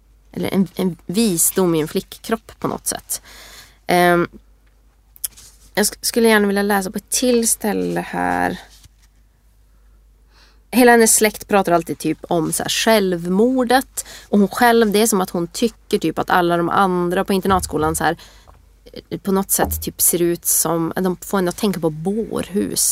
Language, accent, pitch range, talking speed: Swedish, native, 170-210 Hz, 160 wpm